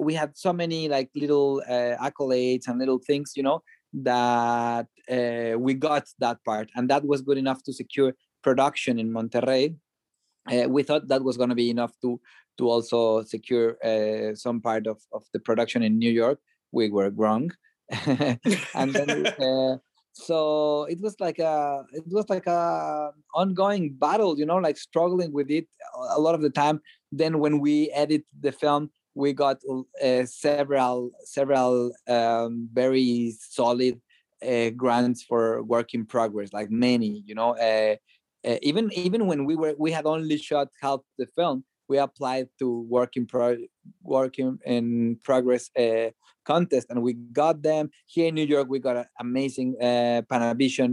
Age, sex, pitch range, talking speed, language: 30-49, male, 120-150 Hz, 170 wpm, English